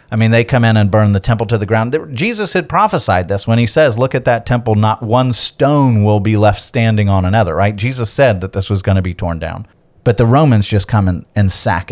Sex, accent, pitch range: male, American, 100-120 Hz